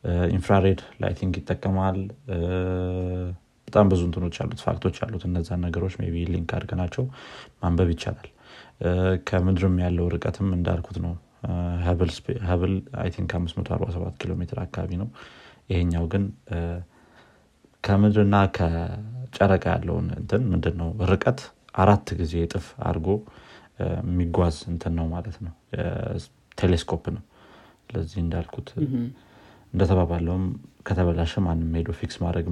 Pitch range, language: 85-100 Hz, Amharic